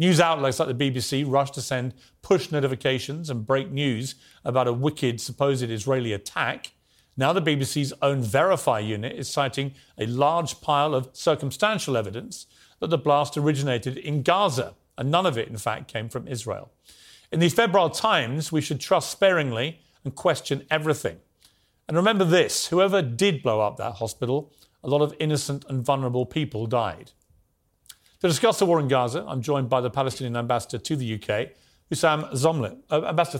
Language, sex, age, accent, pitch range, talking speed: English, male, 40-59, British, 115-150 Hz, 170 wpm